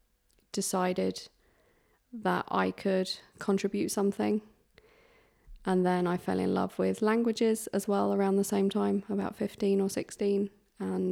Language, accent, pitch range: English, British, 180-205 Hz